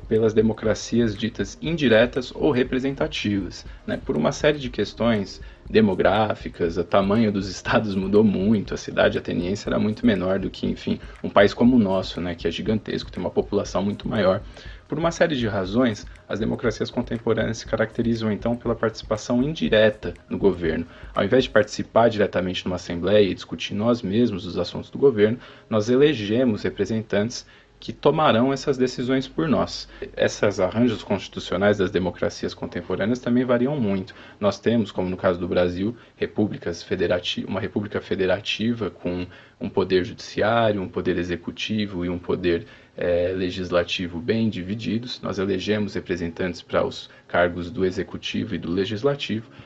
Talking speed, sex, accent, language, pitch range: 155 wpm, male, Brazilian, Portuguese, 90-120 Hz